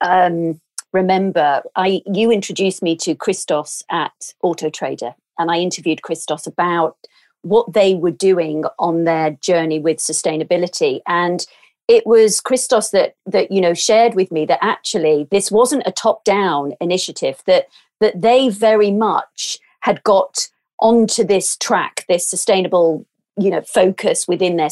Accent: British